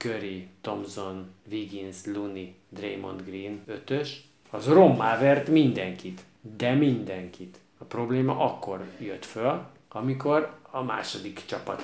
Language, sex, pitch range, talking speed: Hungarian, male, 100-130 Hz, 110 wpm